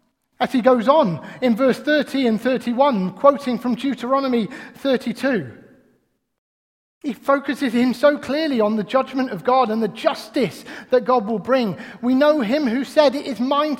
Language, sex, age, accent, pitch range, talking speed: English, male, 30-49, British, 200-265 Hz, 165 wpm